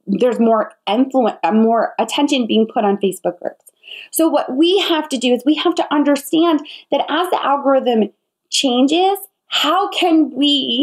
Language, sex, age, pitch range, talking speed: English, female, 20-39, 235-315 Hz, 160 wpm